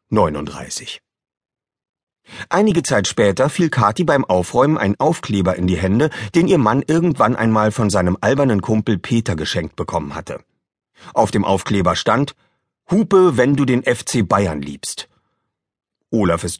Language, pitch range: German, 95-140 Hz